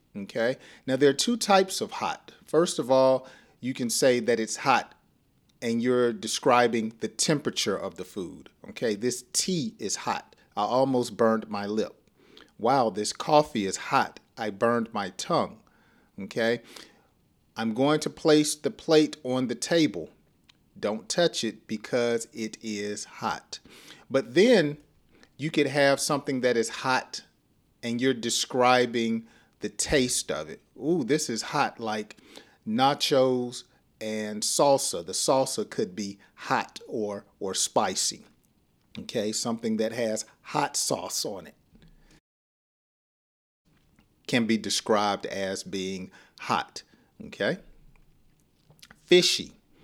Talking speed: 130 wpm